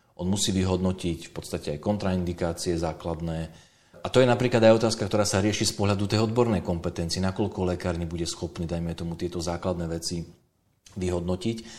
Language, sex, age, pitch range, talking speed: Slovak, male, 40-59, 85-110 Hz, 165 wpm